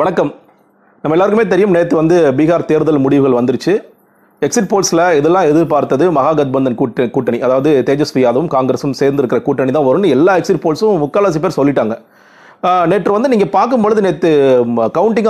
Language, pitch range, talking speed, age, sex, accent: Tamil, 140-185 Hz, 135 wpm, 30-49, male, native